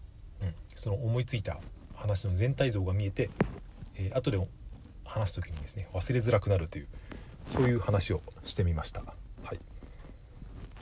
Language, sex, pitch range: Japanese, male, 90-115 Hz